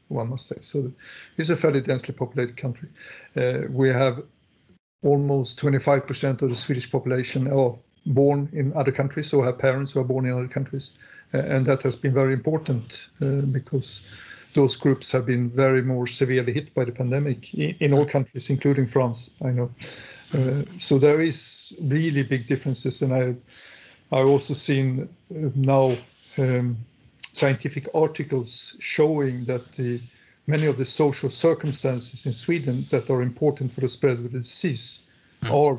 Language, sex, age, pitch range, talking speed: French, male, 50-69, 130-145 Hz, 165 wpm